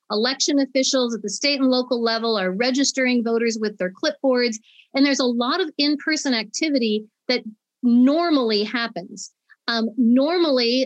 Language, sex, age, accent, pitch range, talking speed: English, female, 40-59, American, 205-260 Hz, 145 wpm